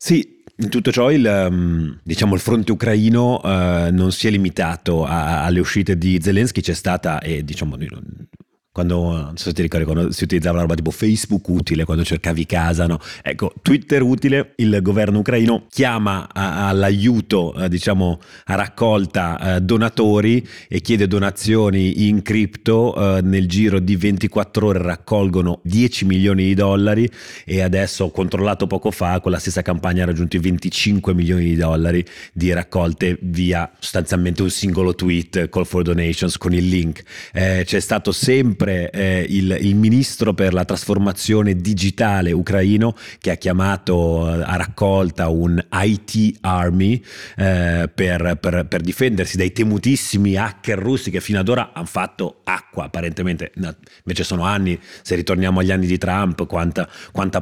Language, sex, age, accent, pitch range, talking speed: Italian, male, 30-49, native, 90-105 Hz, 155 wpm